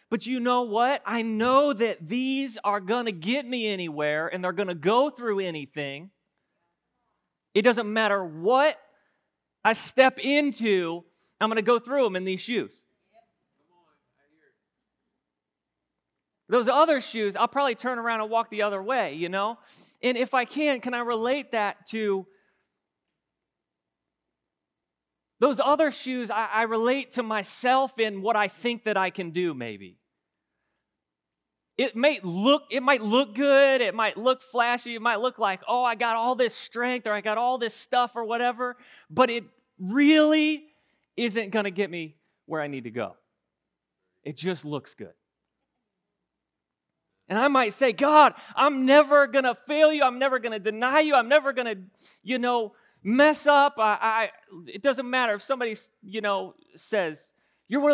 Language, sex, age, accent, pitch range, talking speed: English, male, 30-49, American, 200-265 Hz, 165 wpm